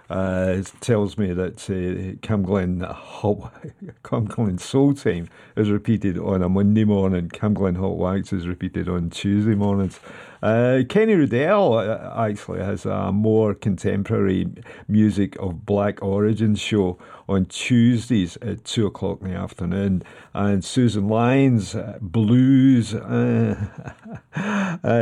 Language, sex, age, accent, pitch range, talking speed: English, male, 50-69, British, 95-110 Hz, 120 wpm